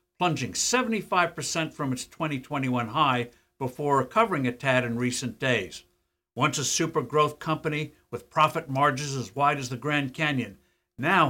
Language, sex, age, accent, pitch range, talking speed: English, male, 60-79, American, 125-160 Hz, 150 wpm